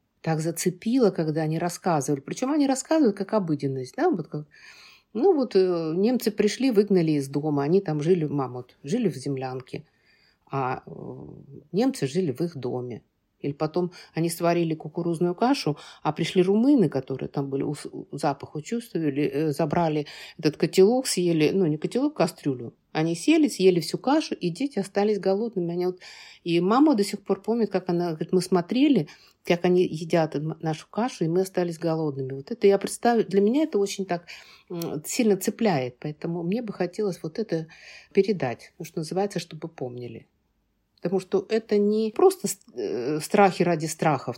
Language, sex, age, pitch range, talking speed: Russian, female, 50-69, 145-200 Hz, 160 wpm